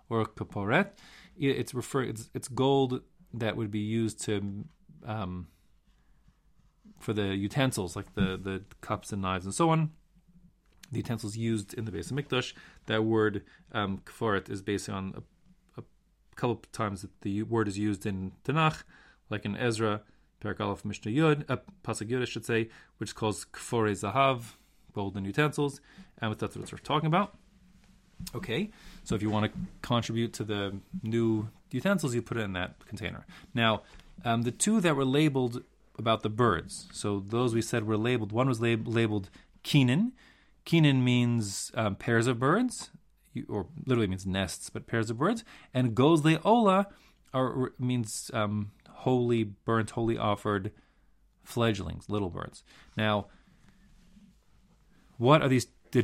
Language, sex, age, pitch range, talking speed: English, male, 30-49, 105-140 Hz, 150 wpm